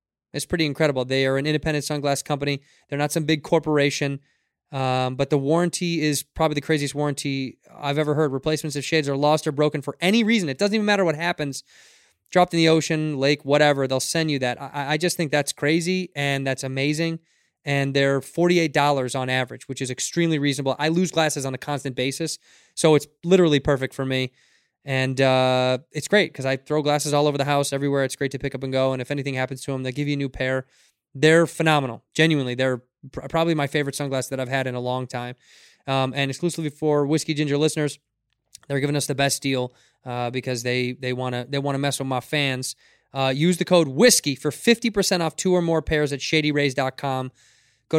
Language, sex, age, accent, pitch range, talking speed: English, male, 20-39, American, 135-155 Hz, 215 wpm